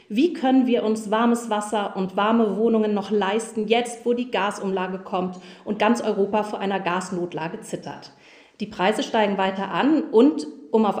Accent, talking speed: German, 170 wpm